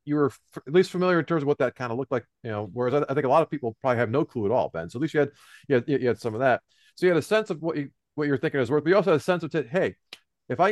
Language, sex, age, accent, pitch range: English, male, 40-59, American, 135-175 Hz